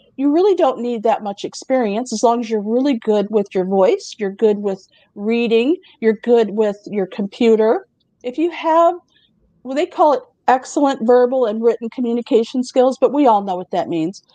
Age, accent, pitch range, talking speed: 50-69, American, 195-260 Hz, 190 wpm